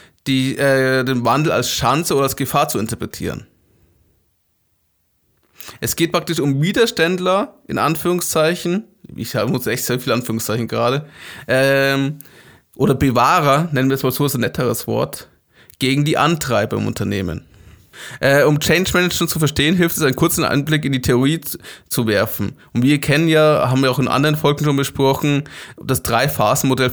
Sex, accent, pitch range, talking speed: male, German, 120-150 Hz, 165 wpm